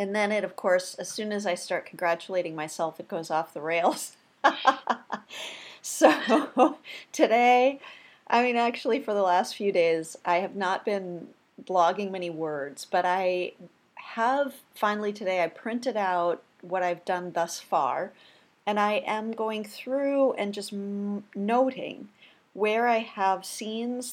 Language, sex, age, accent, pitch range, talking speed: English, female, 40-59, American, 175-210 Hz, 145 wpm